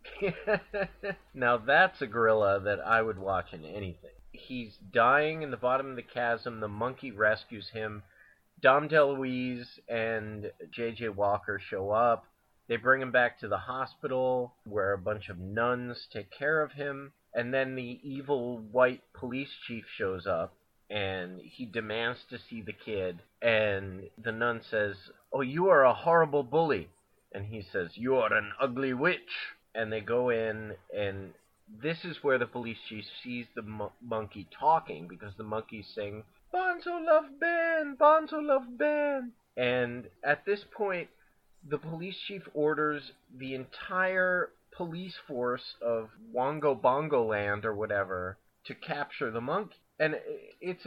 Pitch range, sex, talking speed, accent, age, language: 110-150 Hz, male, 155 wpm, American, 30-49, English